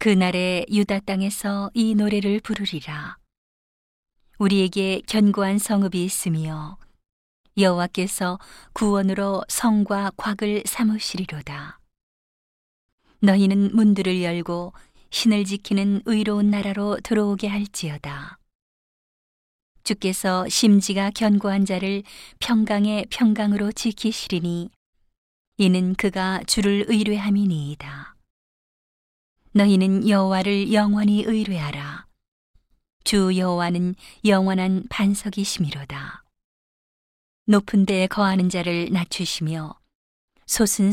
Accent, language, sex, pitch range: native, Korean, female, 180-205 Hz